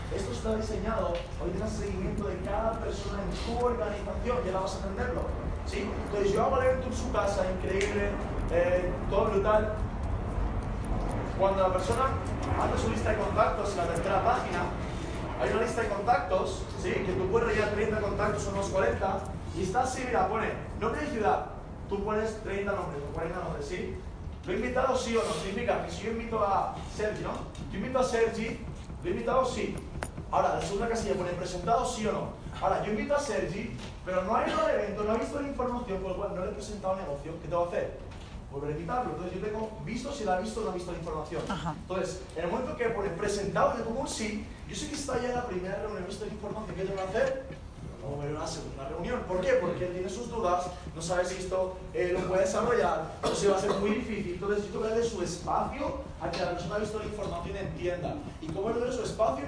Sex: male